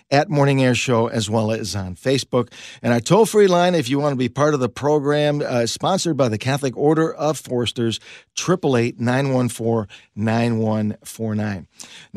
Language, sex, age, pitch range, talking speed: English, male, 50-69, 115-145 Hz, 155 wpm